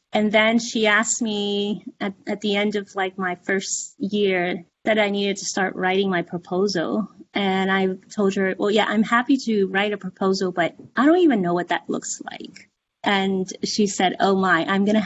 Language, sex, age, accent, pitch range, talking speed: English, female, 20-39, American, 185-240 Hz, 200 wpm